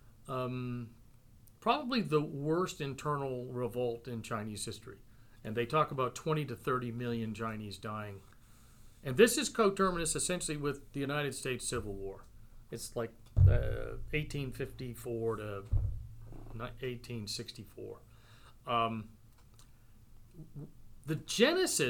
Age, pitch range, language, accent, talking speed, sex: 40-59, 115-140 Hz, English, American, 100 wpm, male